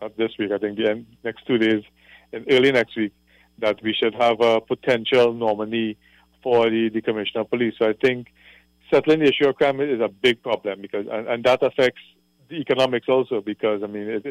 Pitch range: 110-120 Hz